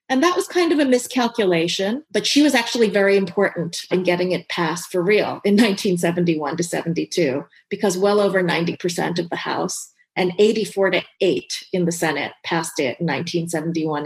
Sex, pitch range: female, 165-200 Hz